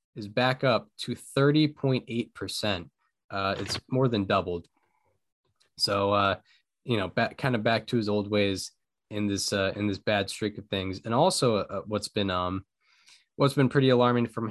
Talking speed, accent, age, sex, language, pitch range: 170 wpm, American, 10-29, male, English, 100-135 Hz